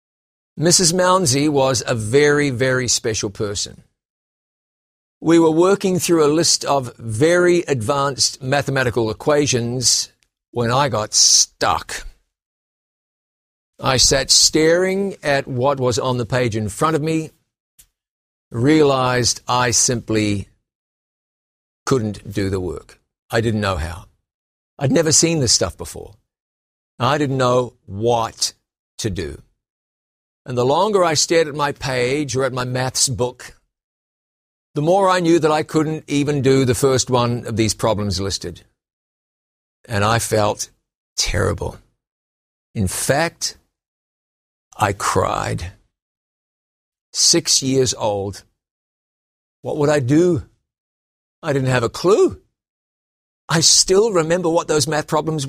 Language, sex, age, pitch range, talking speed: English, male, 50-69, 105-155 Hz, 125 wpm